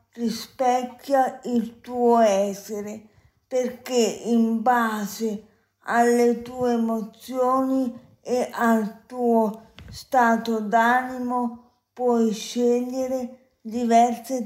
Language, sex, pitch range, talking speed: Italian, female, 220-250 Hz, 75 wpm